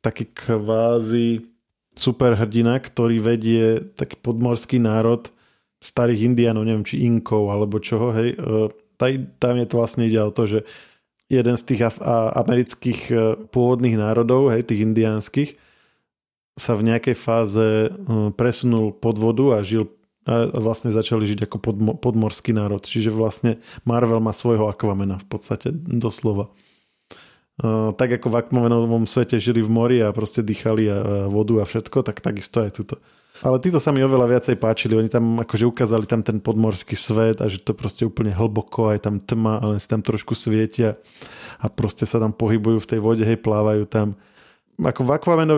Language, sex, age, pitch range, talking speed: Slovak, male, 20-39, 110-120 Hz, 165 wpm